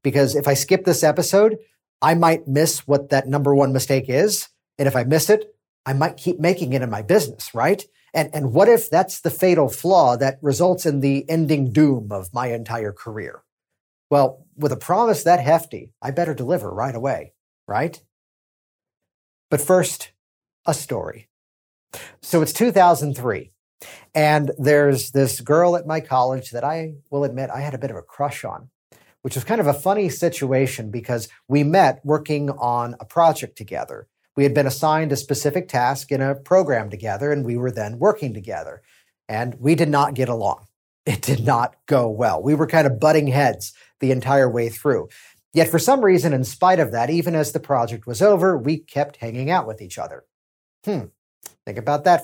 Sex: male